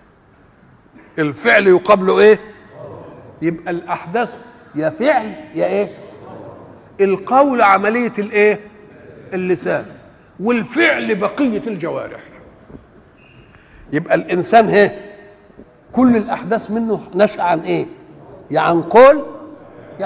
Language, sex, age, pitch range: Arabic, male, 50-69, 185-240 Hz